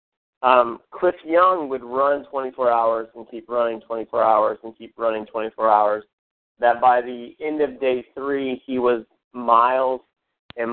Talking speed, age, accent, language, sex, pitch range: 155 wpm, 30-49, American, English, male, 120-145 Hz